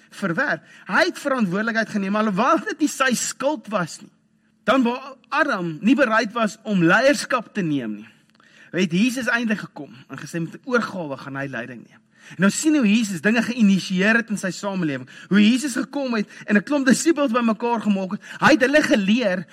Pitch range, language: 180-245 Hz, English